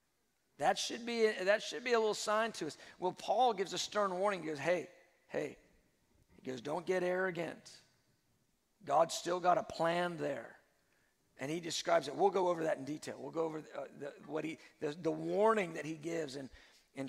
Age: 50-69